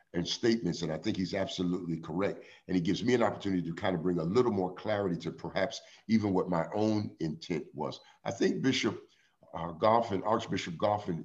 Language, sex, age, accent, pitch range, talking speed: English, male, 50-69, American, 90-110 Hz, 195 wpm